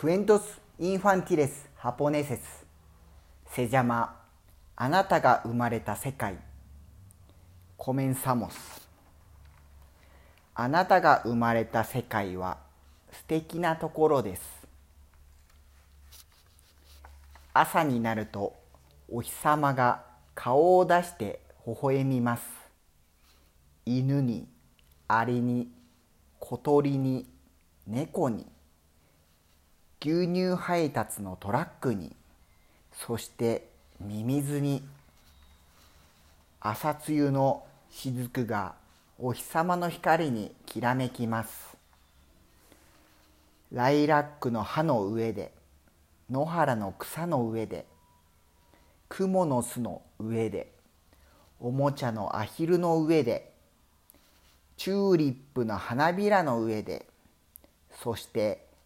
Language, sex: Spanish, male